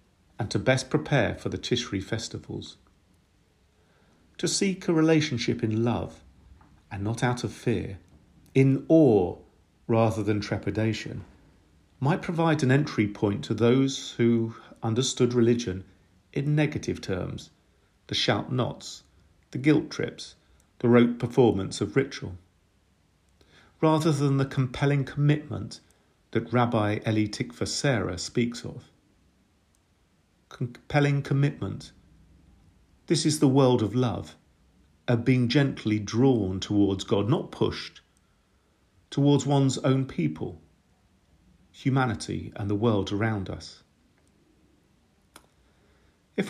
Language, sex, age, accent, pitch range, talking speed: English, male, 50-69, British, 95-135 Hz, 110 wpm